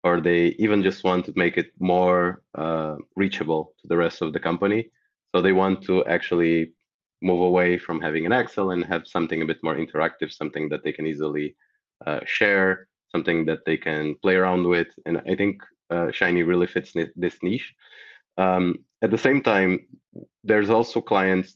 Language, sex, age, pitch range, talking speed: English, male, 20-39, 85-95 Hz, 185 wpm